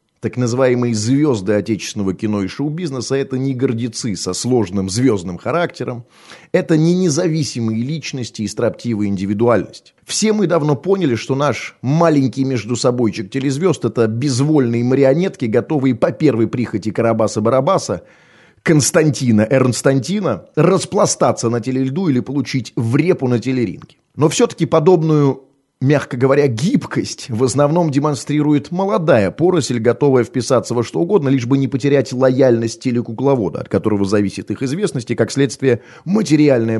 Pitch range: 120-155 Hz